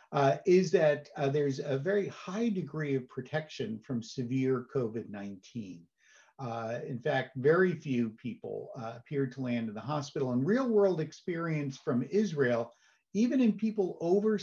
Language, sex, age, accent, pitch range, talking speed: English, male, 50-69, American, 125-175 Hz, 155 wpm